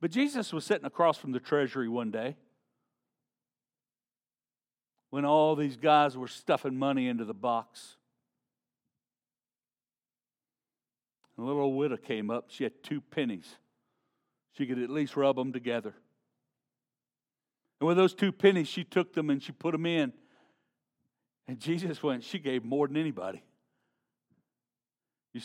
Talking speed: 135 wpm